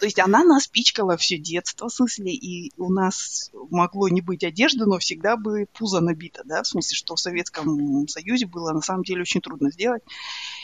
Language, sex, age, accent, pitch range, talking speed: Russian, female, 30-49, native, 175-255 Hz, 200 wpm